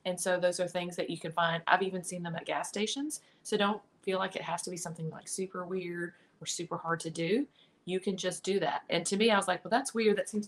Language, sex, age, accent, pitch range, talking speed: English, female, 30-49, American, 175-205 Hz, 280 wpm